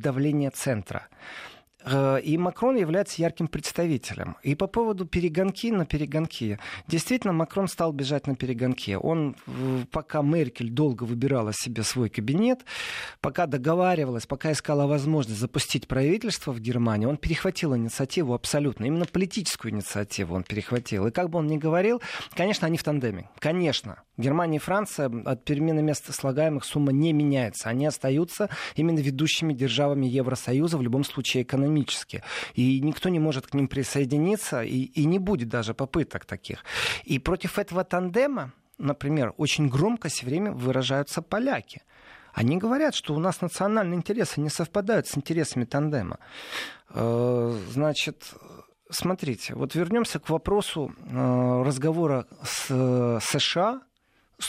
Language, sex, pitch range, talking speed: Russian, male, 130-170 Hz, 135 wpm